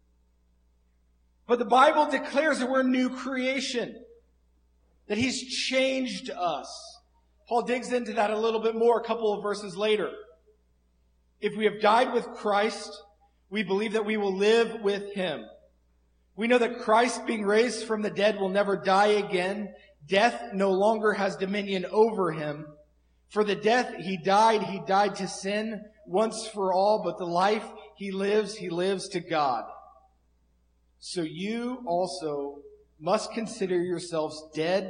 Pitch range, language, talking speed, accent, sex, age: 125-210 Hz, English, 150 wpm, American, male, 40-59